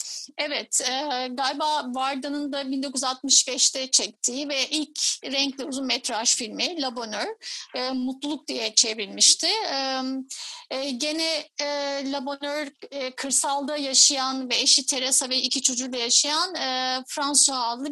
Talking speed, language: 115 wpm, Turkish